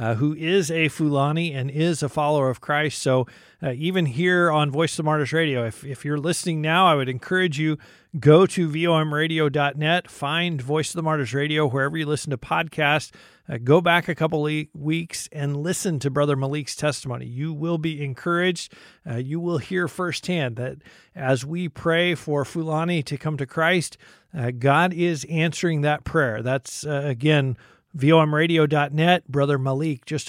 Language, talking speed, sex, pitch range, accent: English, 175 wpm, male, 135-165 Hz, American